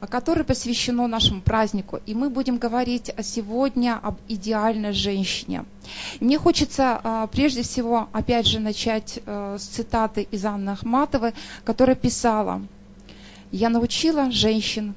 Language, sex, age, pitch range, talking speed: Russian, female, 20-39, 210-255 Hz, 115 wpm